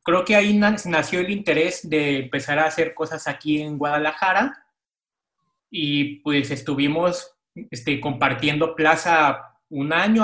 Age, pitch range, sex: 30-49, 140-175 Hz, male